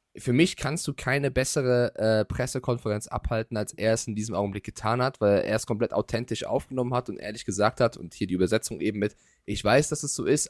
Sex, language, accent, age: male, German, German, 20-39